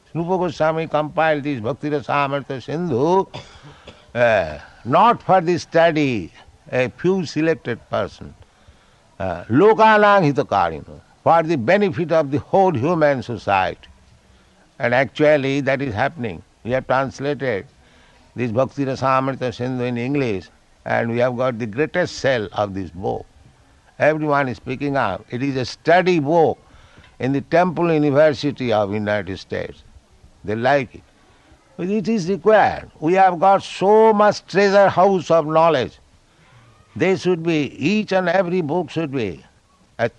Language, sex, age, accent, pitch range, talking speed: English, male, 60-79, Indian, 120-165 Hz, 130 wpm